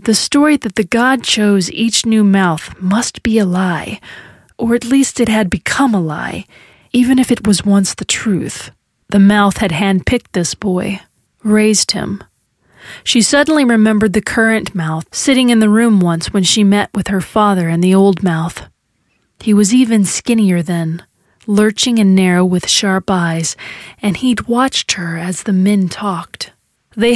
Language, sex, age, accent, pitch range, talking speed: English, female, 30-49, American, 185-225 Hz, 170 wpm